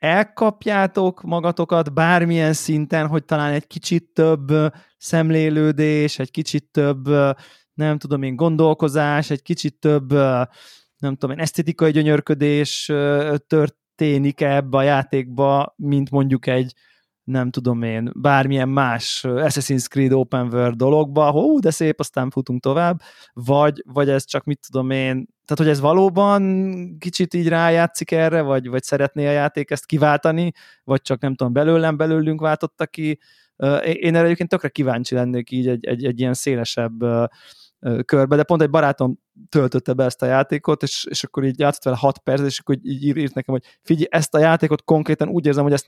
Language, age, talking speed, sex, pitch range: Hungarian, 20-39, 160 wpm, male, 130-155 Hz